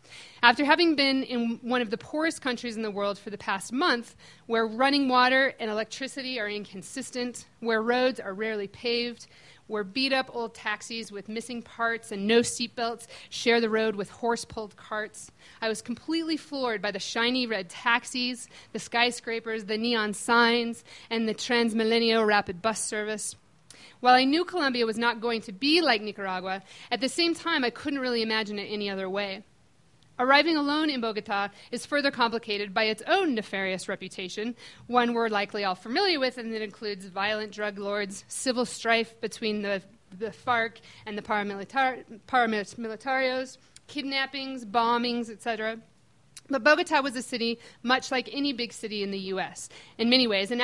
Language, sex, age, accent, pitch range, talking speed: English, female, 40-59, American, 215-255 Hz, 165 wpm